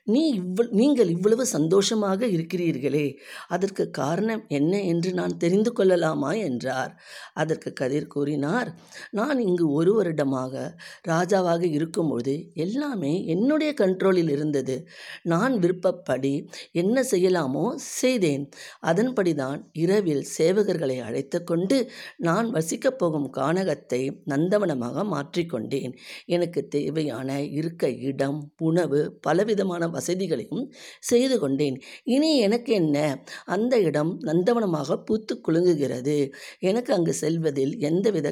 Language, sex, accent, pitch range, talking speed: Tamil, female, native, 145-200 Hz, 95 wpm